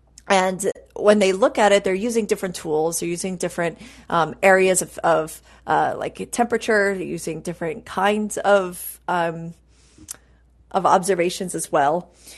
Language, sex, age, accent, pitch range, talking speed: English, female, 30-49, American, 170-215 Hz, 145 wpm